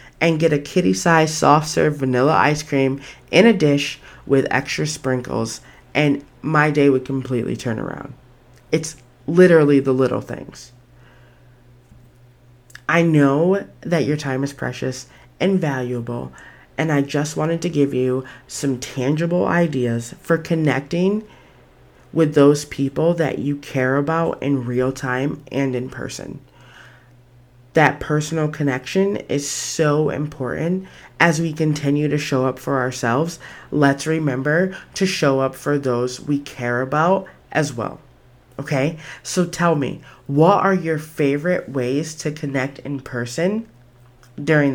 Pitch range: 130-155 Hz